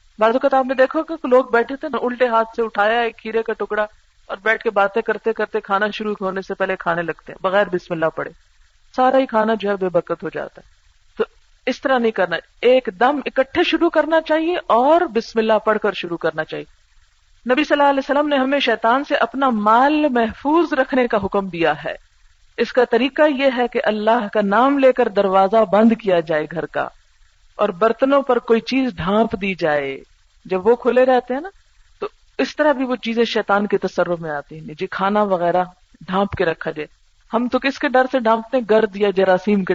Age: 50-69